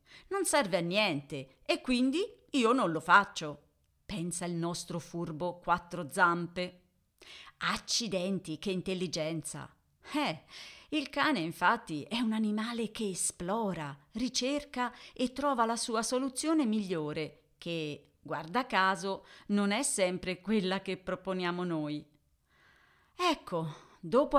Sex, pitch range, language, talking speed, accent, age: female, 165-225 Hz, Italian, 115 wpm, native, 40-59